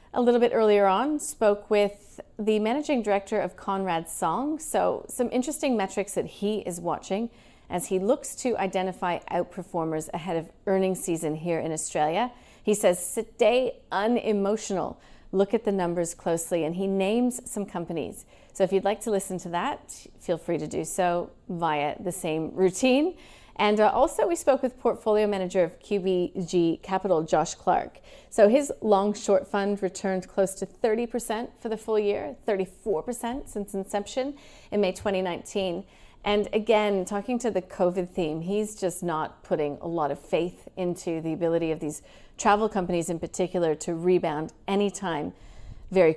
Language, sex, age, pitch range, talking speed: English, female, 40-59, 175-215 Hz, 160 wpm